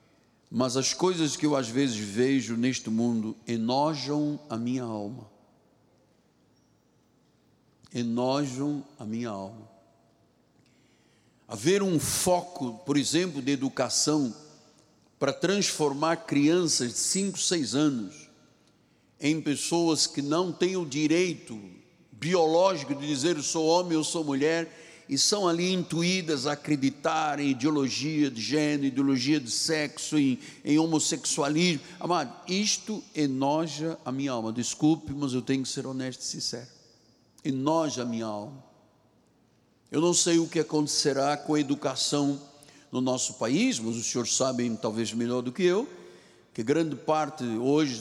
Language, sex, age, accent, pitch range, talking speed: Portuguese, male, 60-79, Brazilian, 125-160 Hz, 135 wpm